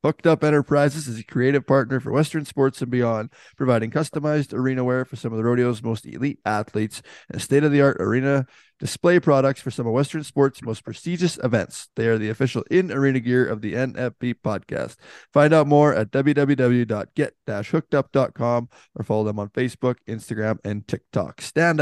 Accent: American